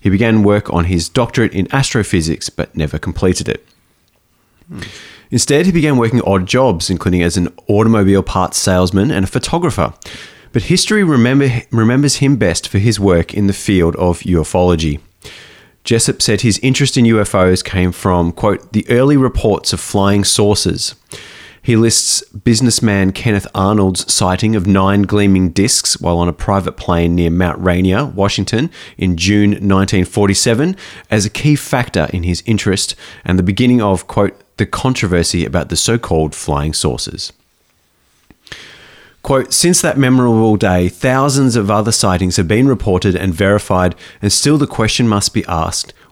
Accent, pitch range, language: Australian, 90-115 Hz, English